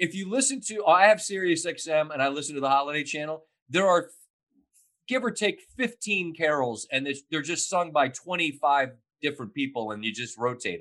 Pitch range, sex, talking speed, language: 155-230 Hz, male, 190 wpm, English